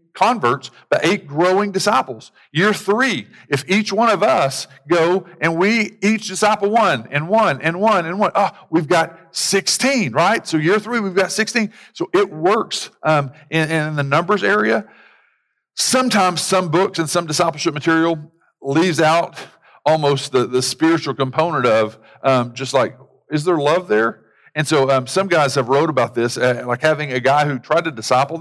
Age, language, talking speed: 50-69, English, 175 wpm